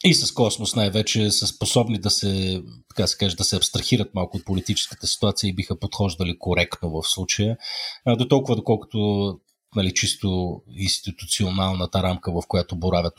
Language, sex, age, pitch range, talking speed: Bulgarian, male, 30-49, 95-115 Hz, 155 wpm